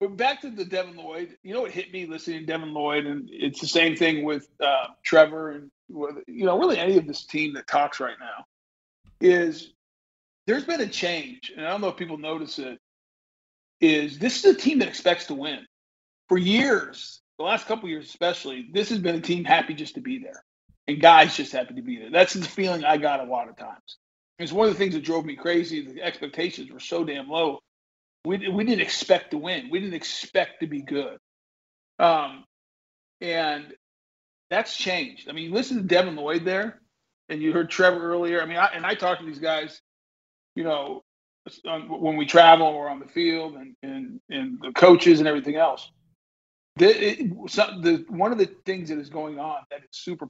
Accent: American